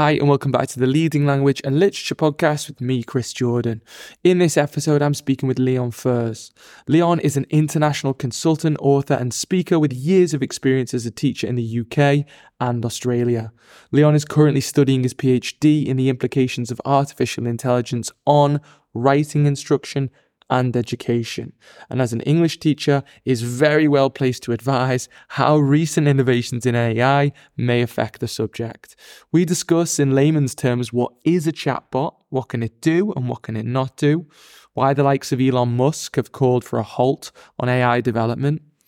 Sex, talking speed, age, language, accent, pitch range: male, 175 wpm, 20-39, English, British, 125-145 Hz